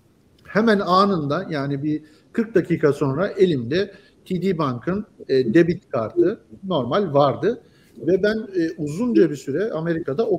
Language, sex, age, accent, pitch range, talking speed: Turkish, male, 50-69, native, 145-195 Hz, 120 wpm